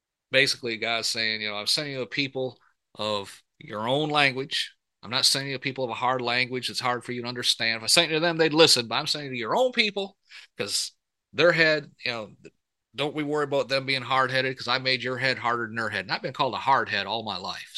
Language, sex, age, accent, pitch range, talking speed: English, male, 40-59, American, 115-145 Hz, 260 wpm